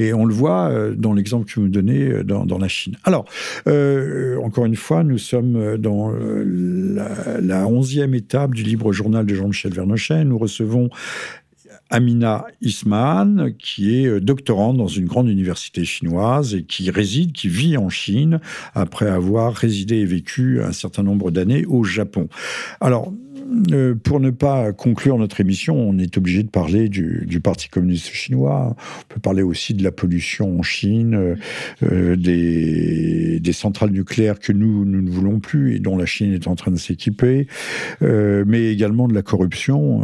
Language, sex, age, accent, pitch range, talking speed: French, male, 50-69, French, 95-125 Hz, 170 wpm